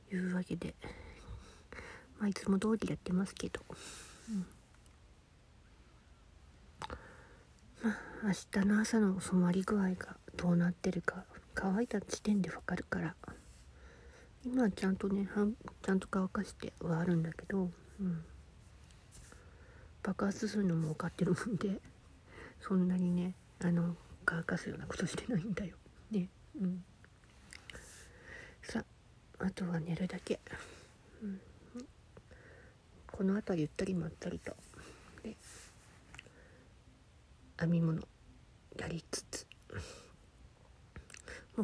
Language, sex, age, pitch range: Japanese, female, 50-69, 165-195 Hz